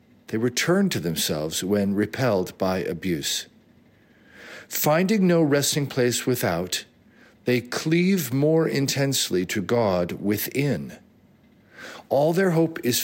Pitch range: 110-155 Hz